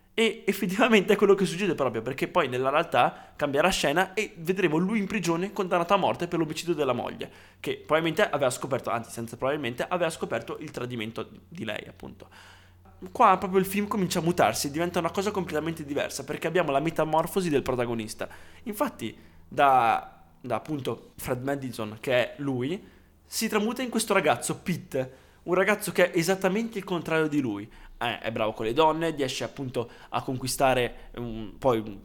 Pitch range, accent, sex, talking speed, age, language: 120-175 Hz, native, male, 175 wpm, 20-39, Italian